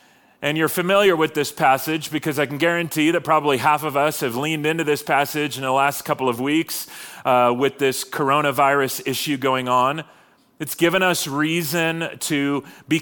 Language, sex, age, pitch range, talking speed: English, male, 30-49, 135-165 Hz, 180 wpm